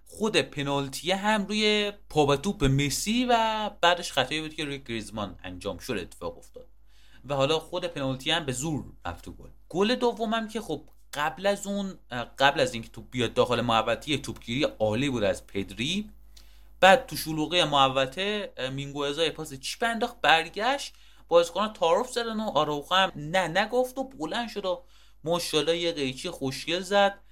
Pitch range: 125-185 Hz